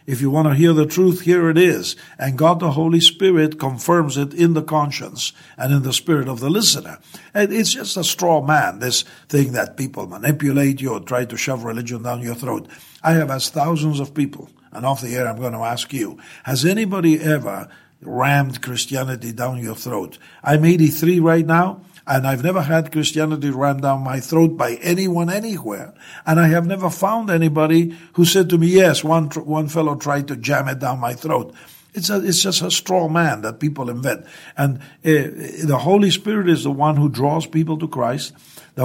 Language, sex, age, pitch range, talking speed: English, male, 50-69, 135-170 Hz, 200 wpm